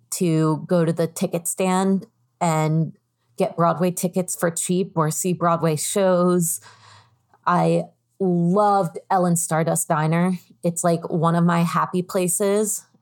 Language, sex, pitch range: English, female, 165-195 Hz